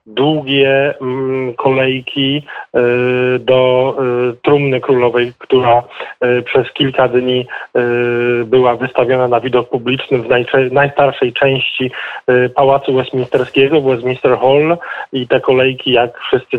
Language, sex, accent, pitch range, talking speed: Polish, male, native, 125-145 Hz, 95 wpm